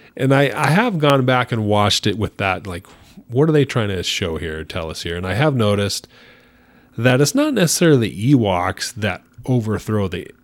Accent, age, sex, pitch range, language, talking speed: American, 30-49, male, 90-115 Hz, English, 195 wpm